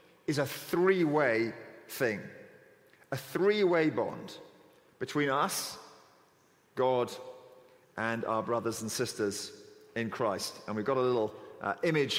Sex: male